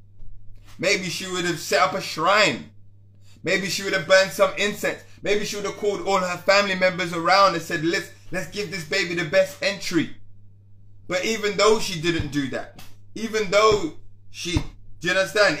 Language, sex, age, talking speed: English, male, 30-49, 185 wpm